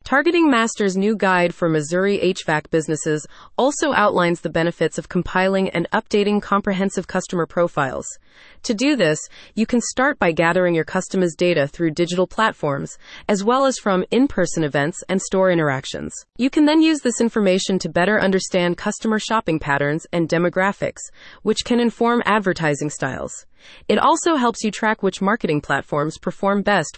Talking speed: 160 wpm